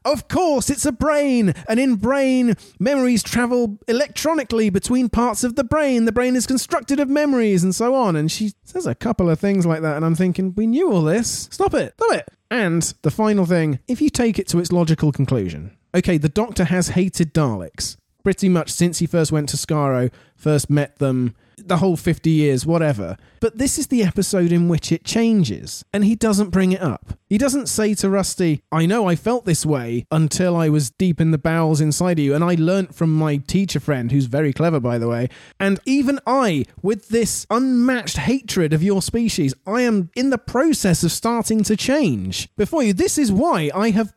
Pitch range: 160-245 Hz